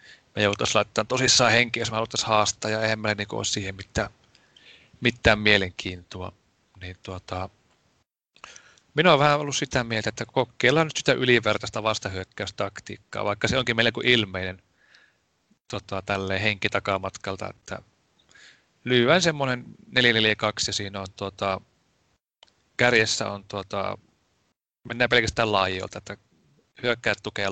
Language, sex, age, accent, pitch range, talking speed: Finnish, male, 30-49, native, 100-120 Hz, 115 wpm